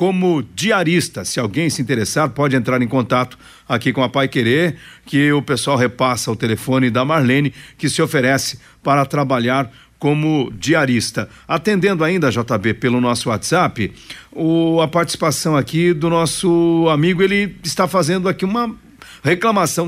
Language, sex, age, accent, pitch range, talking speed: Portuguese, male, 50-69, Brazilian, 135-185 Hz, 150 wpm